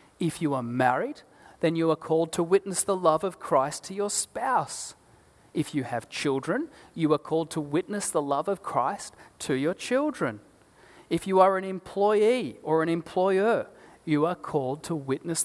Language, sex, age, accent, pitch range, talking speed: English, male, 30-49, Australian, 140-190 Hz, 180 wpm